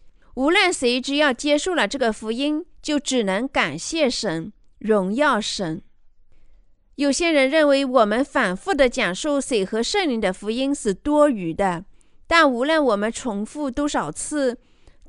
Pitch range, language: 215-300 Hz, Chinese